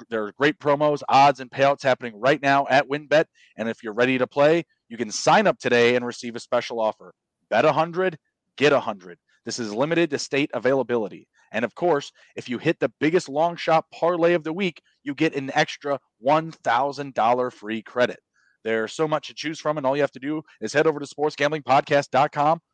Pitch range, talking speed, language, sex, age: 120-150 Hz, 205 wpm, English, male, 30-49